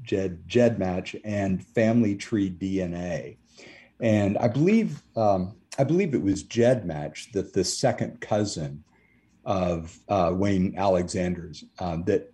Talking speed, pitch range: 125 wpm, 85-105 Hz